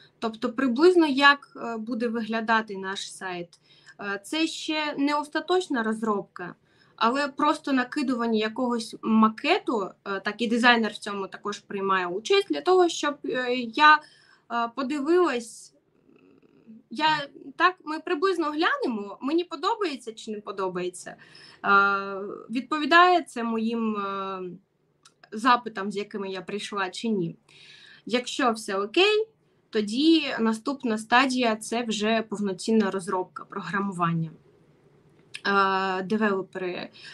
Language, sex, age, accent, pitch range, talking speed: Ukrainian, female, 20-39, native, 200-295 Hz, 100 wpm